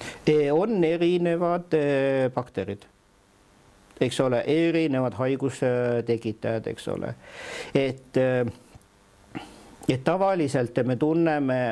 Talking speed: 70 wpm